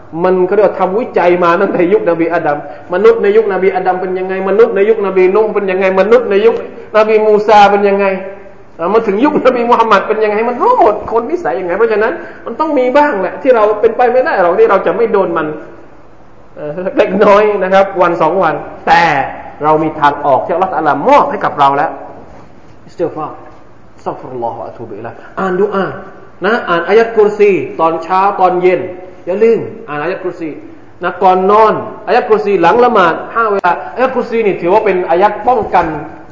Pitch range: 155-225 Hz